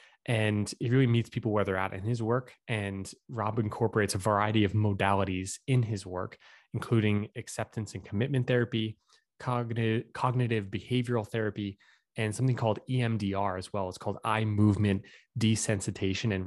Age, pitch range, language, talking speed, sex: 20-39, 95-115 Hz, English, 150 wpm, male